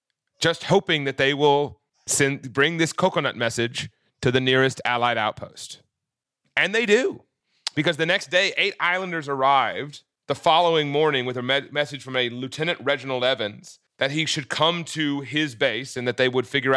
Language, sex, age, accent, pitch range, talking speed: English, male, 30-49, American, 130-160 Hz, 170 wpm